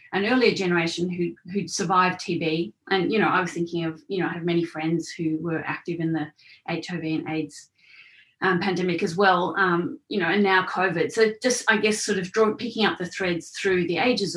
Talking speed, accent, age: 215 wpm, Australian, 30-49